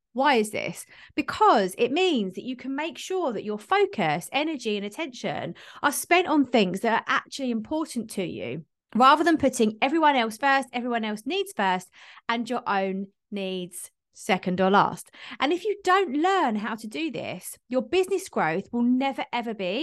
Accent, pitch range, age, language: British, 210-320 Hz, 20-39, English